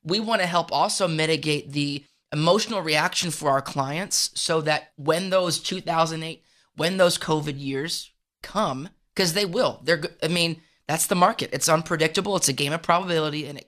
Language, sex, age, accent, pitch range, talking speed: English, male, 20-39, American, 145-180 Hz, 175 wpm